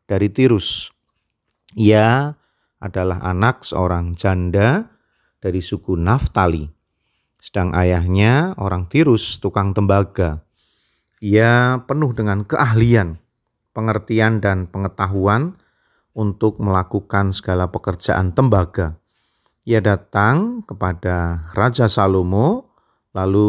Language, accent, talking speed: Indonesian, native, 85 wpm